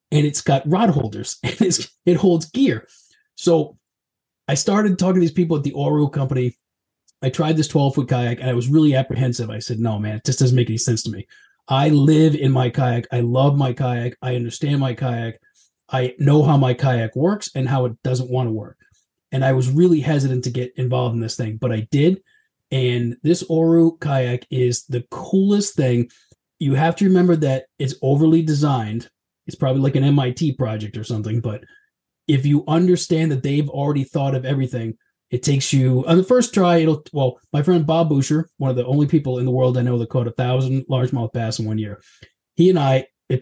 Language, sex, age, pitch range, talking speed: English, male, 30-49, 125-160 Hz, 210 wpm